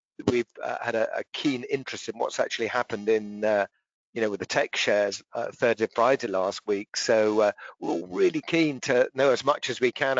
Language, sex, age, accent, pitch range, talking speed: English, male, 50-69, British, 115-145 Hz, 225 wpm